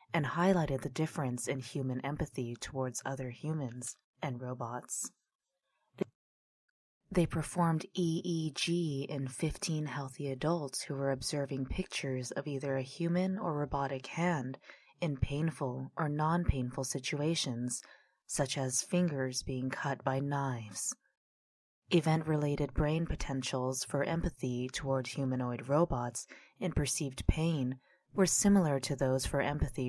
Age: 20-39